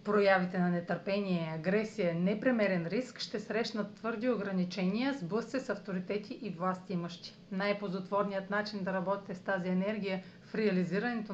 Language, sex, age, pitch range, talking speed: Bulgarian, female, 40-59, 185-225 Hz, 130 wpm